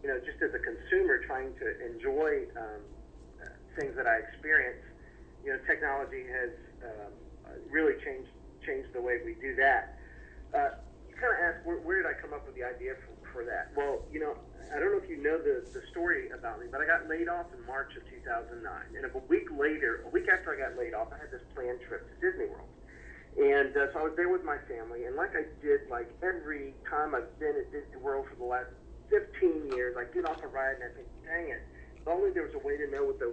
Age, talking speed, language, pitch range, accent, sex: 40-59, 240 wpm, English, 350-425 Hz, American, male